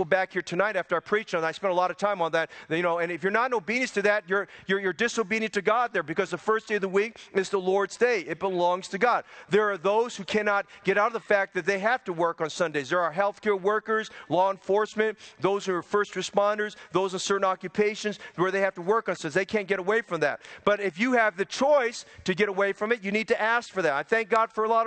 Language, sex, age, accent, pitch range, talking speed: English, male, 40-59, American, 185-215 Hz, 280 wpm